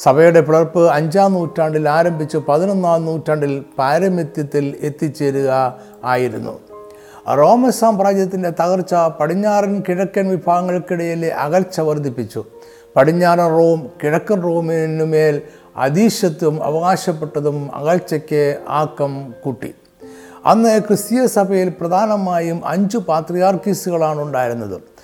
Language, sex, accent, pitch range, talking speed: Malayalam, male, native, 150-190 Hz, 80 wpm